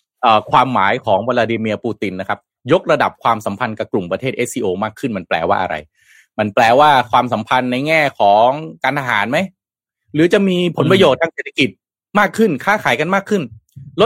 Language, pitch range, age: Thai, 110-160 Hz, 20-39